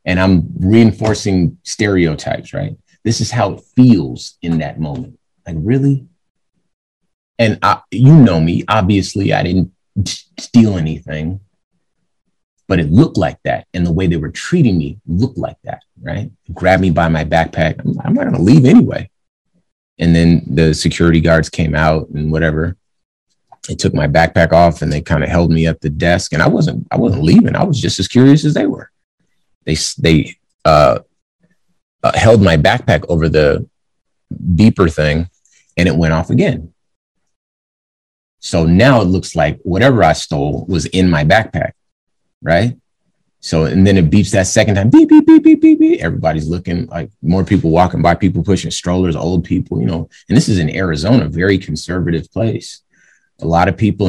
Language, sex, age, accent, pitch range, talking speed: English, male, 30-49, American, 80-100 Hz, 180 wpm